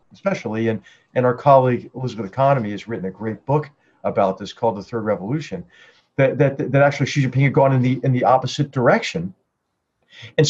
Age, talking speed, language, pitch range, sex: 50-69, 190 wpm, English, 120-155 Hz, male